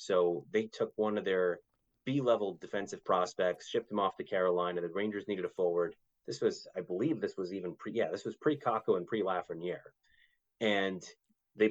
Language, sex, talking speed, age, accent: English, male, 185 wpm, 30-49, American